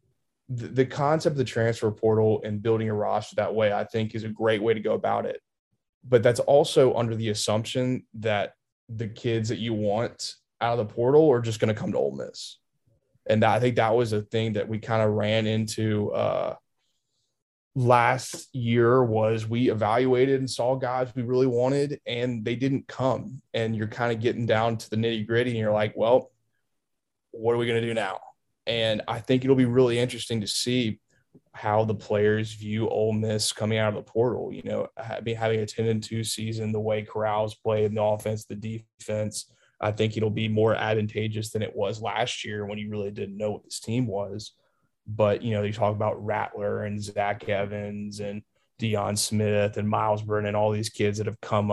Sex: male